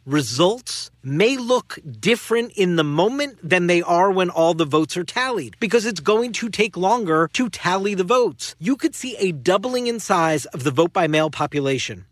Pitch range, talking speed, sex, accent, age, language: 165-230 Hz, 195 wpm, male, American, 40-59, English